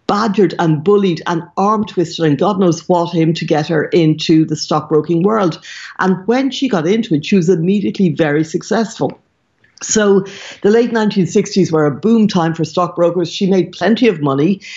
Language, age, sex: English, 60-79, female